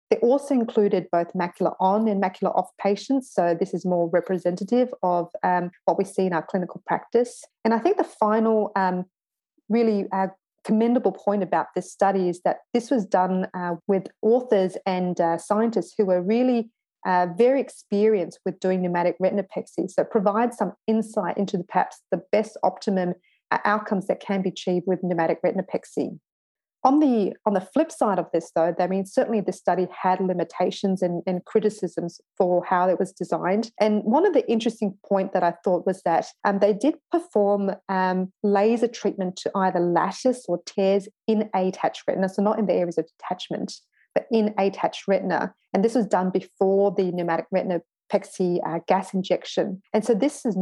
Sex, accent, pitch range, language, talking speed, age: female, Australian, 180-215 Hz, English, 180 wpm, 40-59